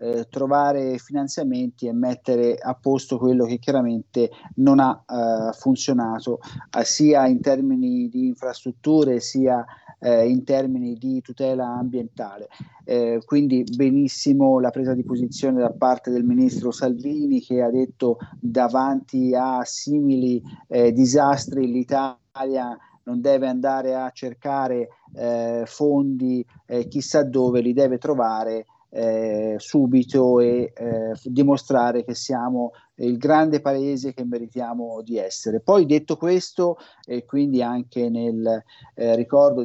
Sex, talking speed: male, 125 wpm